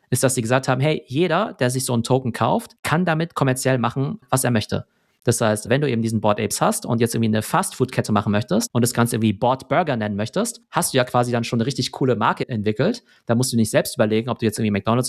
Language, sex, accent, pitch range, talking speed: German, male, German, 115-140 Hz, 265 wpm